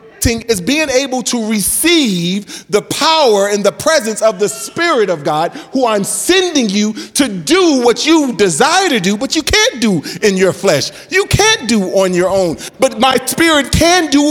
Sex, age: male, 40-59